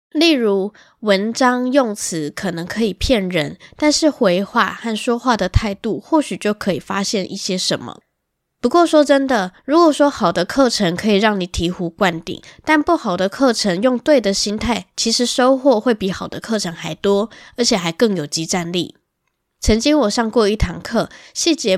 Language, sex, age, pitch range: Chinese, female, 10-29, 180-240 Hz